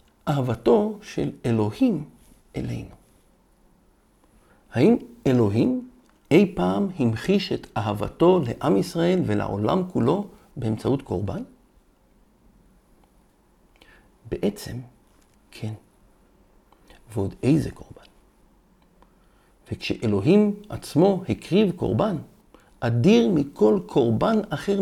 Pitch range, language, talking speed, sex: 110-180 Hz, Hebrew, 75 wpm, male